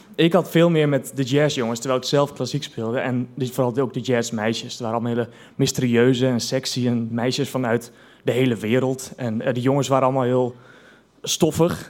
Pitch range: 125-155 Hz